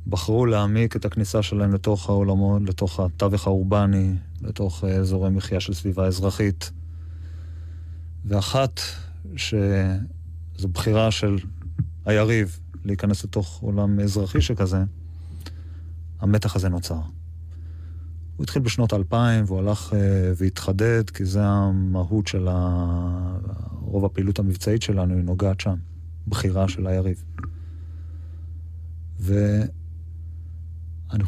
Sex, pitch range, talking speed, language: male, 85-100 Hz, 100 wpm, Hebrew